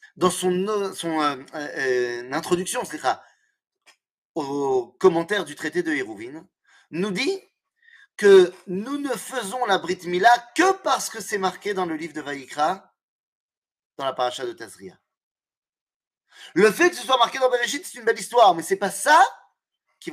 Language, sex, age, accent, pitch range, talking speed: French, male, 30-49, French, 175-280 Hz, 165 wpm